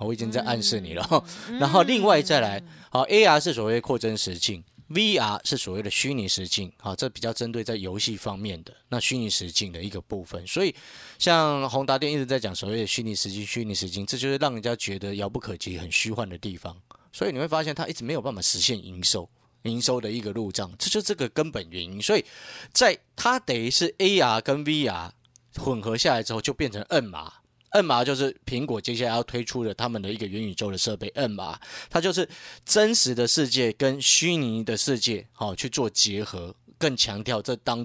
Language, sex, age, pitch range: Chinese, male, 30-49, 100-135 Hz